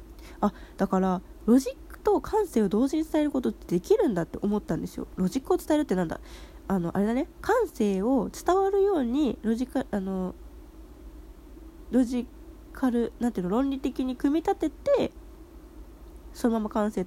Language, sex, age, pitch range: Japanese, female, 20-39, 200-330 Hz